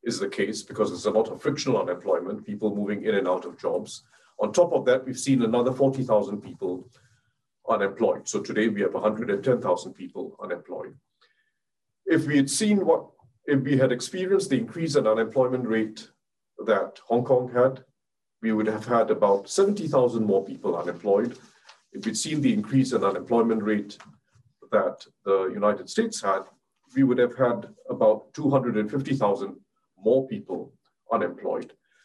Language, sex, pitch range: English, male, 115-155 Hz